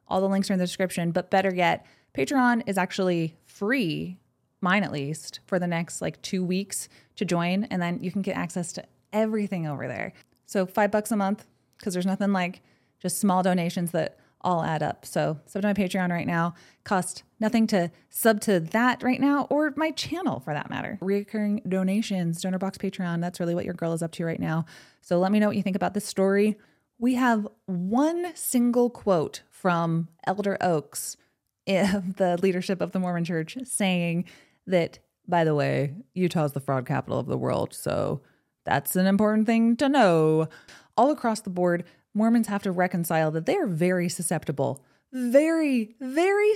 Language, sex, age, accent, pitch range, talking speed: English, female, 20-39, American, 175-215 Hz, 190 wpm